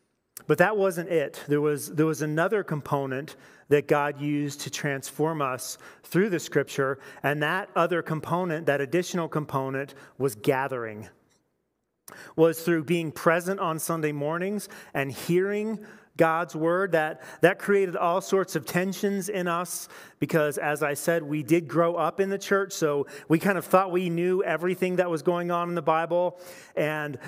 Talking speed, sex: 165 wpm, male